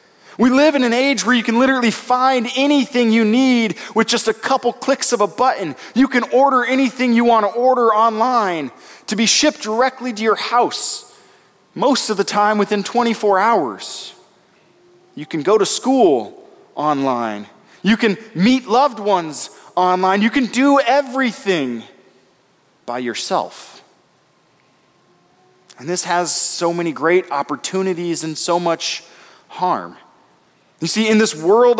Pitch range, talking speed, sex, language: 175-245 Hz, 145 wpm, male, English